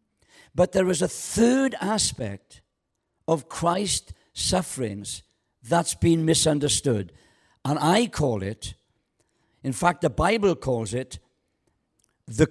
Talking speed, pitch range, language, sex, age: 110 wpm, 125-180 Hz, English, male, 60-79